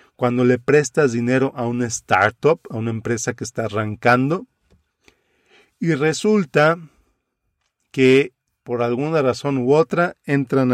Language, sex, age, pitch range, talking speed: Spanish, male, 40-59, 120-145 Hz, 125 wpm